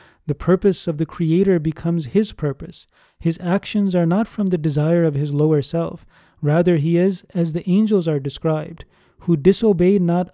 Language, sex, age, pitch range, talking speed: English, male, 30-49, 160-190 Hz, 175 wpm